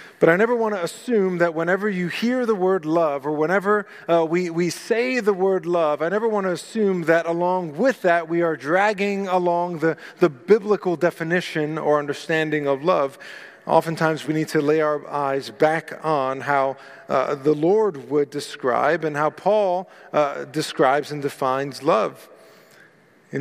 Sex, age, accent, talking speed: male, 40-59, American, 170 wpm